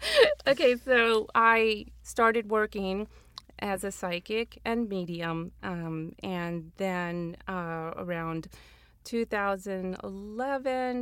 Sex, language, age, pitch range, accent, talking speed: female, English, 30-49, 170-195 Hz, American, 85 wpm